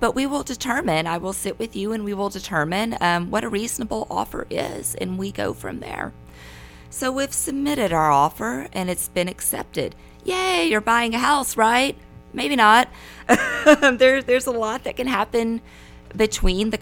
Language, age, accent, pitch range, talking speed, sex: English, 30-49, American, 150-215 Hz, 175 wpm, female